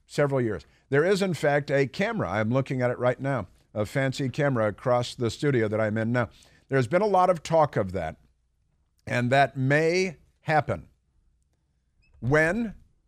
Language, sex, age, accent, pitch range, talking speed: English, male, 50-69, American, 95-130 Hz, 170 wpm